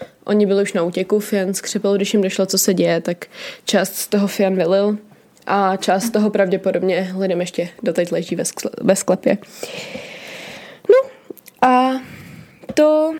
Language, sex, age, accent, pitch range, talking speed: Czech, female, 20-39, native, 200-235 Hz, 140 wpm